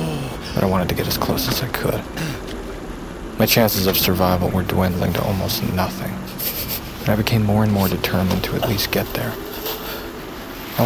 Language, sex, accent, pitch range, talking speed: English, male, American, 90-110 Hz, 175 wpm